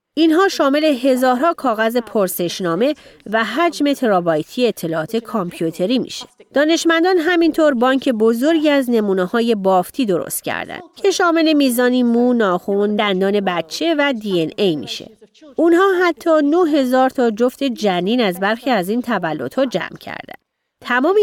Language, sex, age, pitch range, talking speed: Persian, female, 30-49, 200-280 Hz, 135 wpm